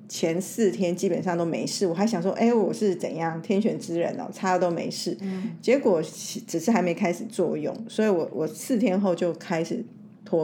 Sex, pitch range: female, 175-225 Hz